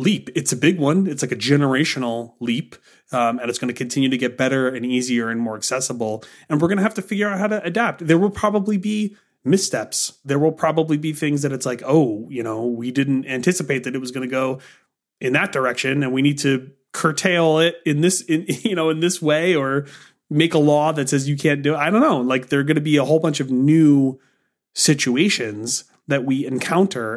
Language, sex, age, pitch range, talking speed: English, male, 30-49, 130-160 Hz, 230 wpm